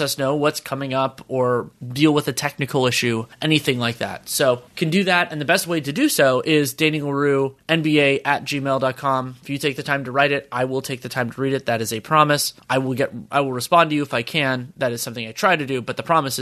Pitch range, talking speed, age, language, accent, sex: 125-150 Hz, 260 wpm, 20-39, English, American, male